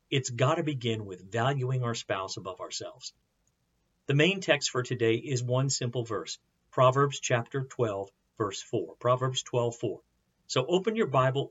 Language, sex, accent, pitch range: English, male, American, 110-145 Hz